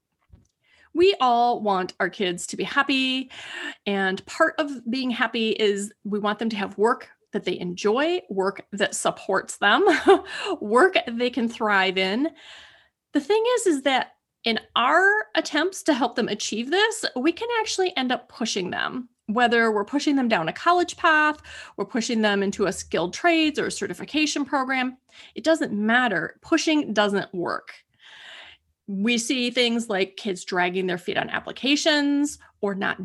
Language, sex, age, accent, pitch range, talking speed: English, female, 30-49, American, 200-285 Hz, 160 wpm